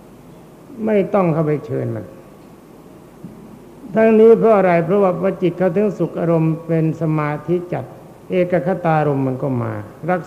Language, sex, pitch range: Thai, male, 140-180 Hz